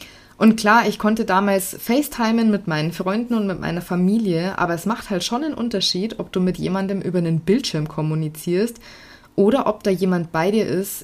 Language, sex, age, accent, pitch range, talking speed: German, female, 20-39, German, 165-215 Hz, 190 wpm